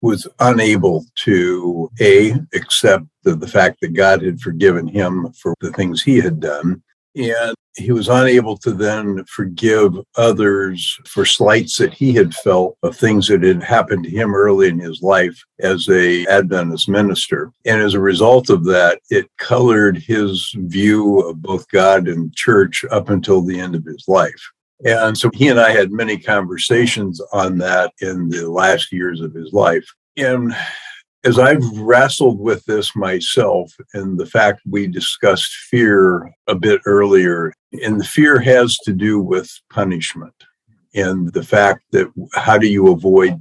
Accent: American